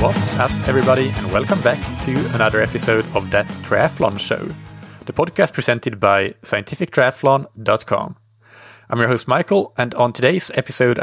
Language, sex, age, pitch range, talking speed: English, male, 30-49, 105-125 Hz, 140 wpm